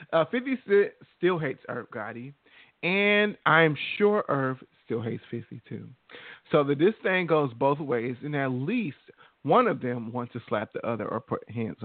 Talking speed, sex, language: 180 wpm, male, English